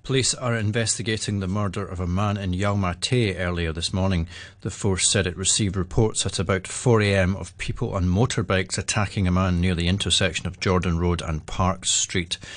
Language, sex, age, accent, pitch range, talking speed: English, male, 40-59, British, 90-110 Hz, 180 wpm